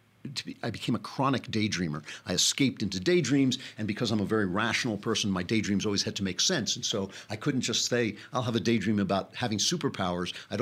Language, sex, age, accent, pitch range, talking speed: English, male, 50-69, American, 100-125 Hz, 220 wpm